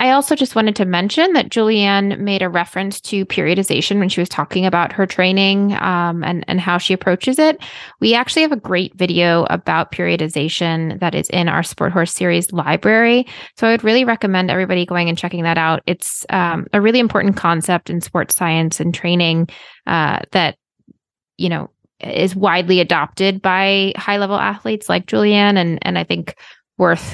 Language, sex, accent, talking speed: English, female, American, 185 wpm